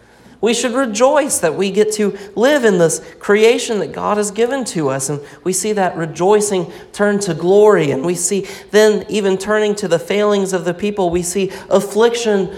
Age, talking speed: 40-59, 190 wpm